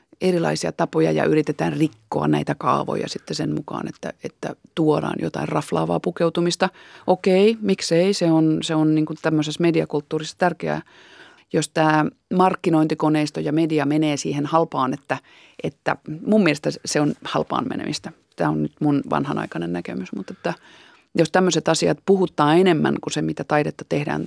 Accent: native